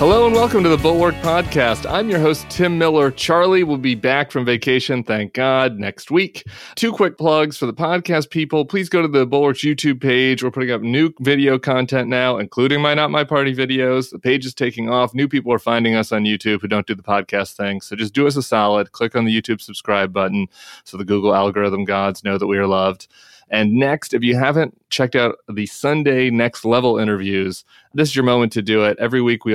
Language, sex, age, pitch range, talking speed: English, male, 30-49, 105-140 Hz, 225 wpm